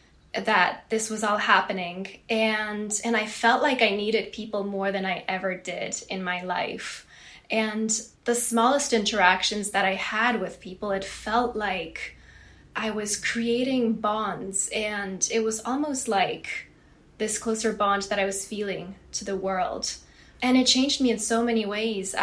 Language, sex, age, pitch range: English, female, 10-29, 195-230 Hz